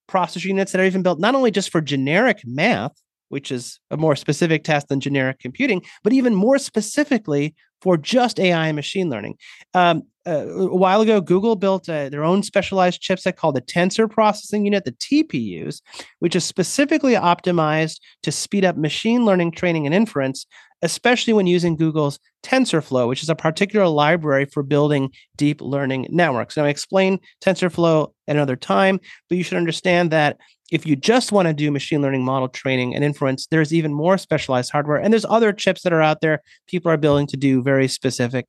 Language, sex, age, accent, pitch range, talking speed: English, male, 30-49, American, 145-190 Hz, 190 wpm